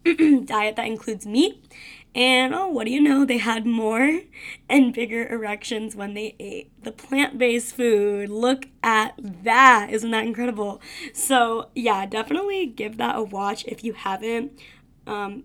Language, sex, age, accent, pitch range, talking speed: English, female, 20-39, American, 220-275 Hz, 150 wpm